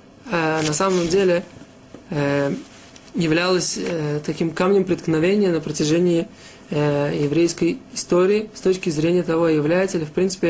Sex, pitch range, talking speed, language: male, 165-190 Hz, 115 wpm, Russian